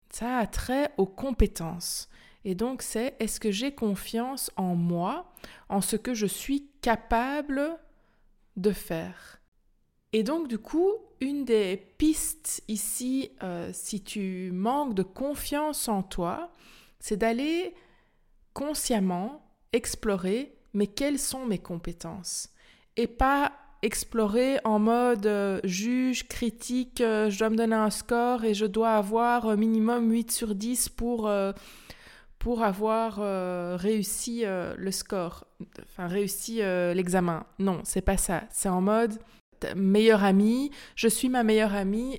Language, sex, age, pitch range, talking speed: French, female, 20-39, 195-245 Hz, 140 wpm